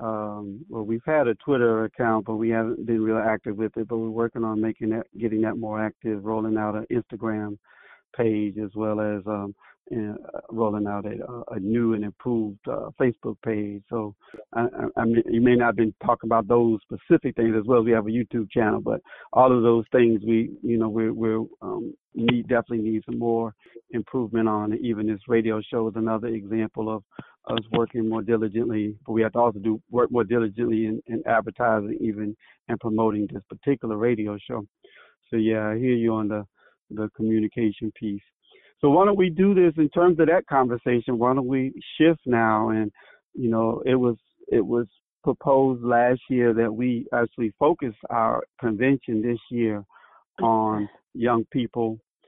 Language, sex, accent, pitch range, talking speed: English, male, American, 110-120 Hz, 190 wpm